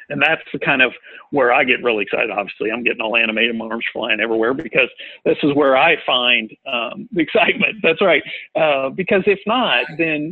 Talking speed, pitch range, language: 205 wpm, 125-165 Hz, English